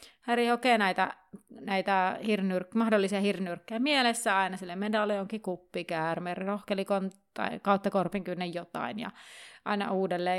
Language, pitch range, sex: Finnish, 190-235 Hz, female